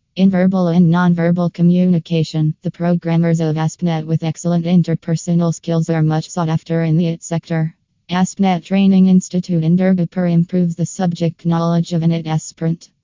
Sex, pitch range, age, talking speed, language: female, 165-180 Hz, 20-39, 155 wpm, English